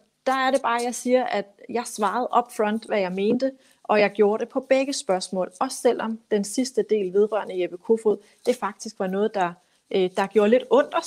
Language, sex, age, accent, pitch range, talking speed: Danish, female, 30-49, native, 185-230 Hz, 210 wpm